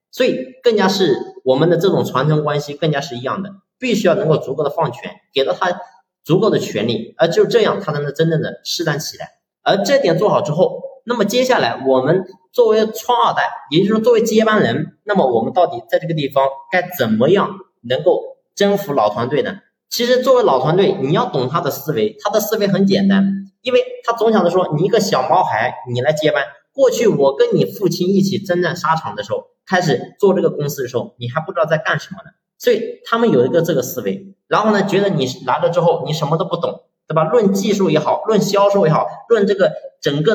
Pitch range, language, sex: 160-225 Hz, Chinese, male